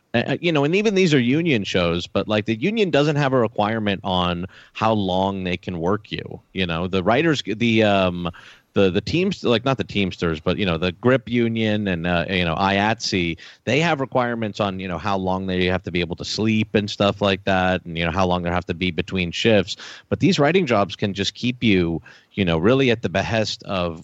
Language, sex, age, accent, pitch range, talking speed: English, male, 30-49, American, 90-115 Hz, 230 wpm